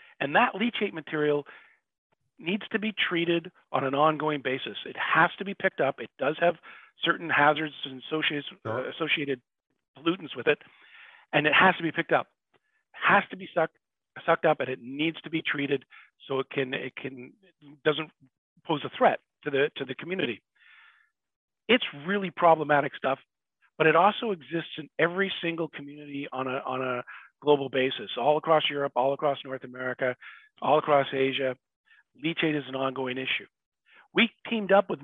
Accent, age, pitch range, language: American, 40-59, 135-180 Hz, English